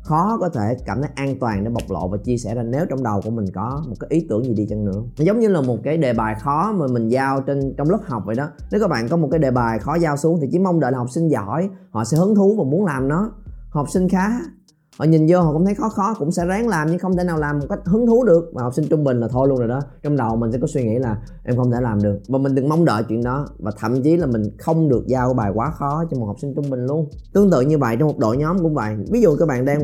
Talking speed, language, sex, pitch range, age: 325 wpm, Vietnamese, male, 120-165 Hz, 20-39